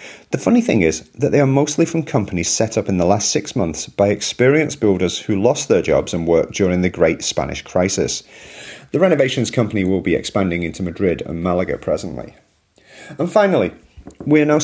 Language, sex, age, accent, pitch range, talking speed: English, male, 40-59, British, 95-145 Hz, 195 wpm